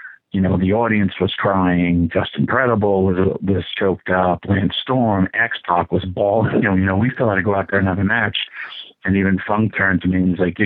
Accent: American